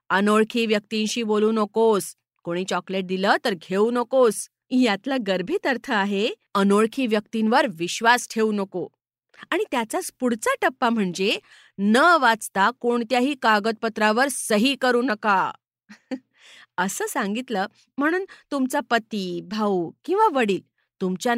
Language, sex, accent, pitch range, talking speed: Marathi, female, native, 205-280 Hz, 110 wpm